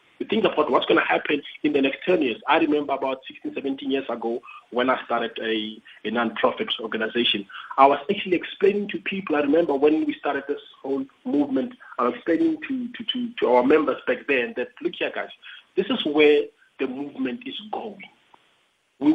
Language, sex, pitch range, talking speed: English, male, 140-220 Hz, 195 wpm